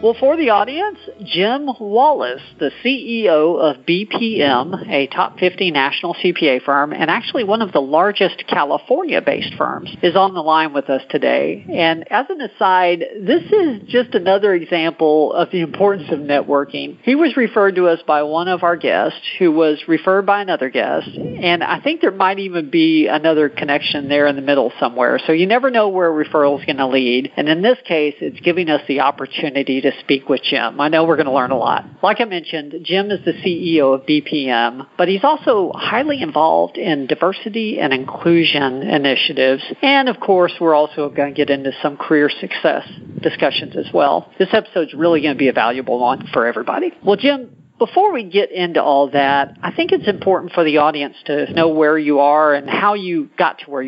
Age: 50-69